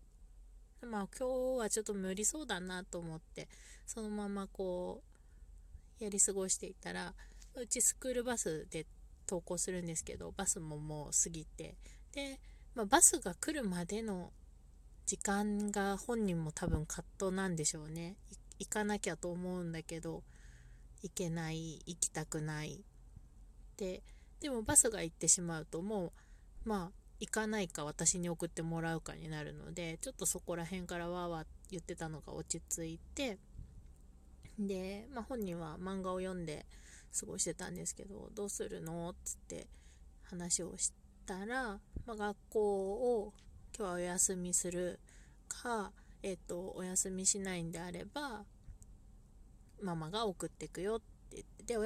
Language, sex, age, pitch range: Japanese, female, 20-39, 165-205 Hz